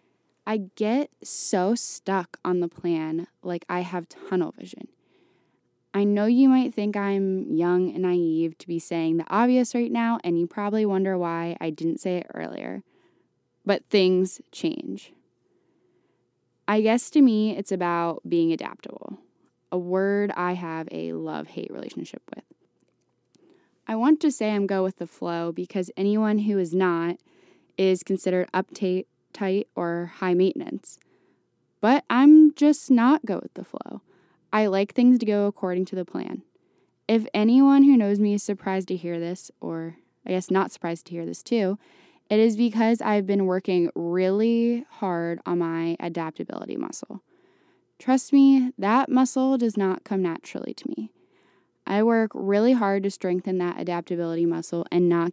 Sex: female